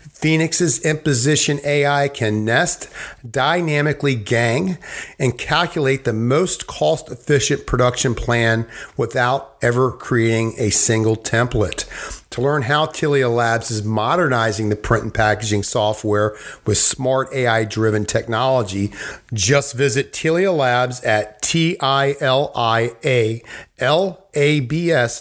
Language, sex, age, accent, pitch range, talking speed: English, male, 50-69, American, 115-145 Hz, 100 wpm